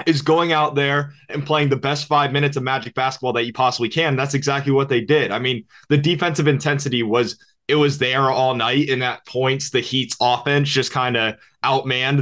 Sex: male